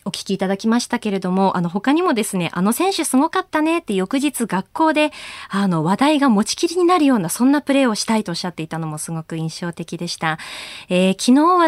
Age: 20-39